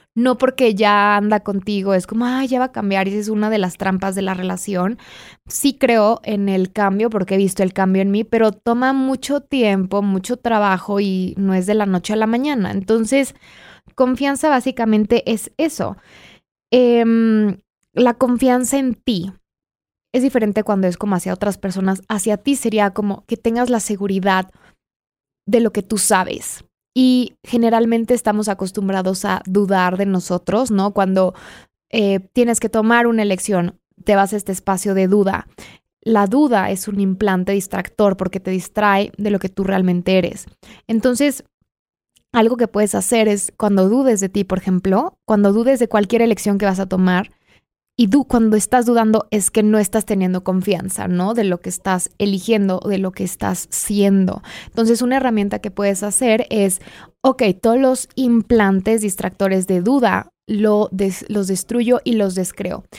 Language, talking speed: Spanish, 170 wpm